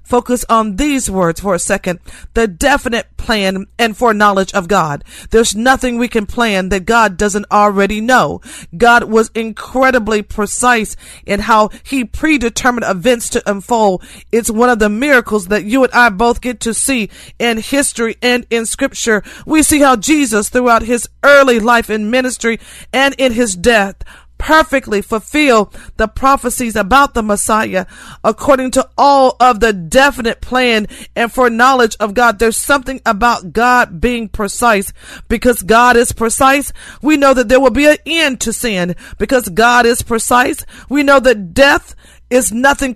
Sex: female